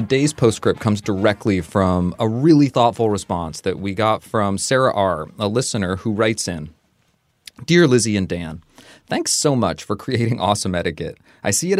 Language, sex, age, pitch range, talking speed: English, male, 20-39, 95-130 Hz, 175 wpm